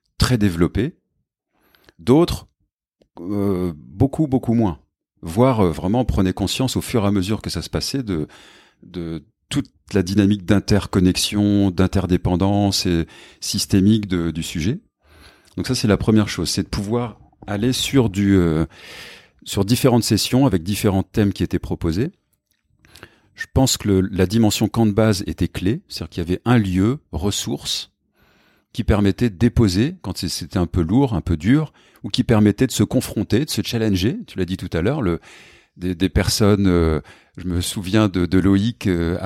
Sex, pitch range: male, 90-115 Hz